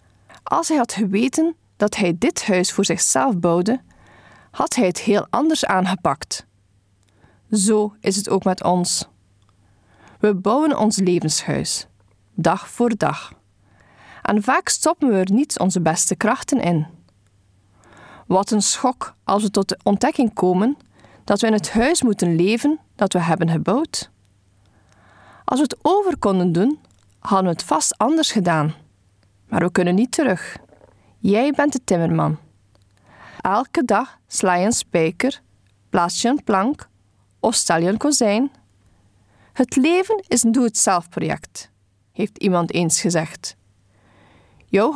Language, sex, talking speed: Dutch, female, 140 wpm